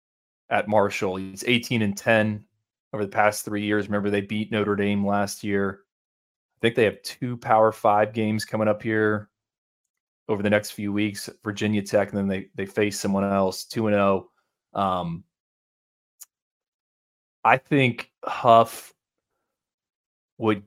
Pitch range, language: 100-110 Hz, English